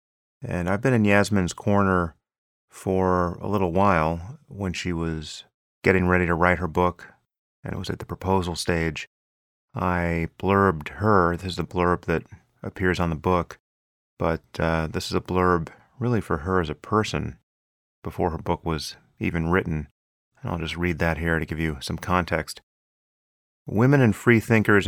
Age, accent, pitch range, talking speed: 30-49, American, 85-100 Hz, 170 wpm